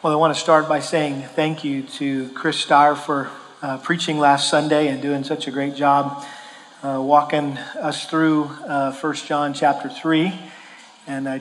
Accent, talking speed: American, 175 wpm